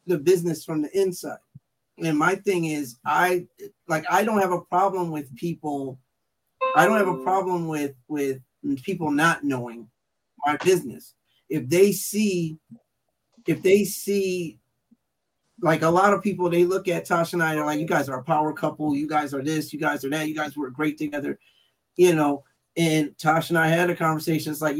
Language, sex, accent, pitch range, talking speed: English, male, American, 150-185 Hz, 190 wpm